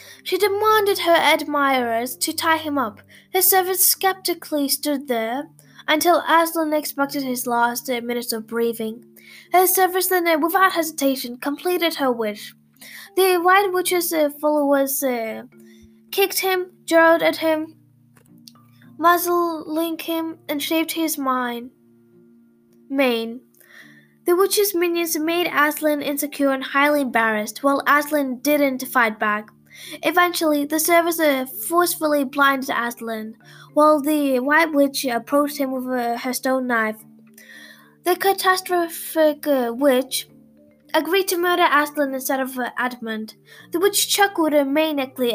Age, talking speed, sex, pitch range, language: 10-29, 125 wpm, female, 245-330 Hz, English